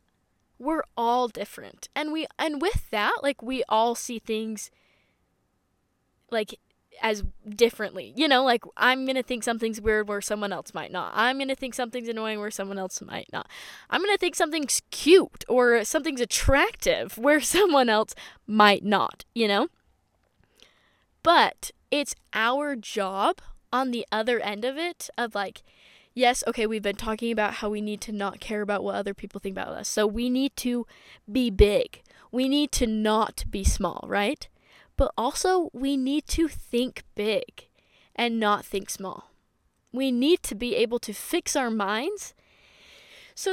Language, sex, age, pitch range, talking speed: English, female, 10-29, 210-280 Hz, 165 wpm